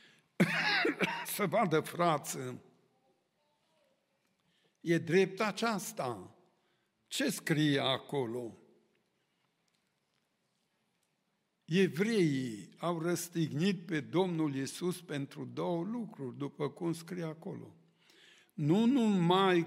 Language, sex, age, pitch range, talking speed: Romanian, male, 60-79, 150-190 Hz, 75 wpm